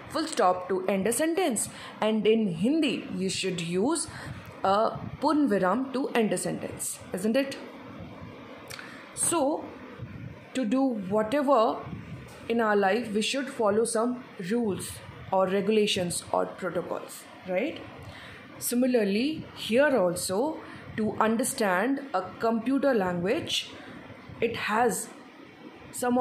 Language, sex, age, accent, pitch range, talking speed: English, female, 20-39, Indian, 190-255 Hz, 110 wpm